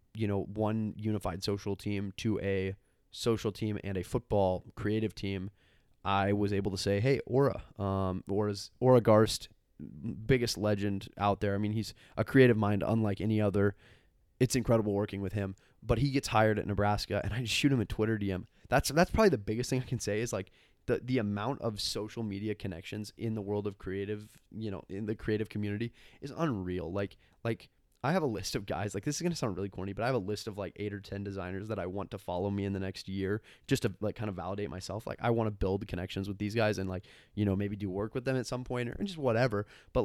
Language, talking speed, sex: English, 240 wpm, male